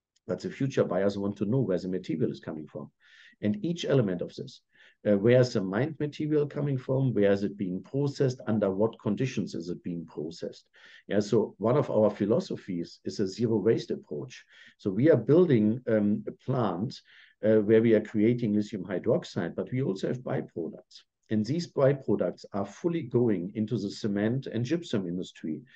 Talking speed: 185 wpm